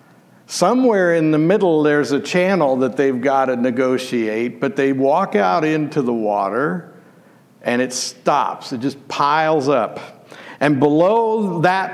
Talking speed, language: 145 wpm, English